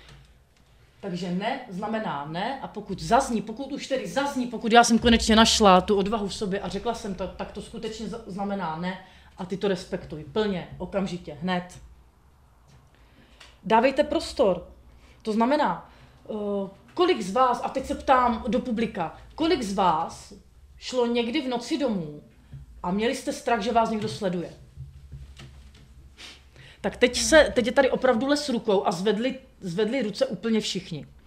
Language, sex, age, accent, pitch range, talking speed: Czech, female, 30-49, native, 175-235 Hz, 155 wpm